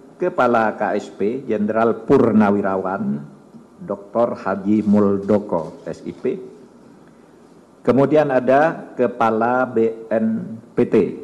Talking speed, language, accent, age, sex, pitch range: 65 wpm, Indonesian, native, 50-69, male, 105-125 Hz